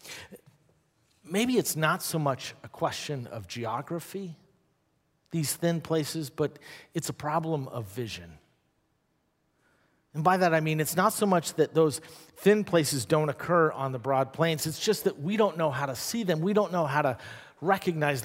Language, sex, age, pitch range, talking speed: English, male, 50-69, 130-165 Hz, 175 wpm